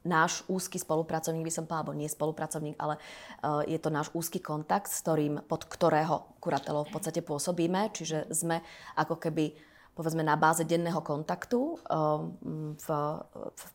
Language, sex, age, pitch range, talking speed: Slovak, female, 20-39, 155-175 Hz, 155 wpm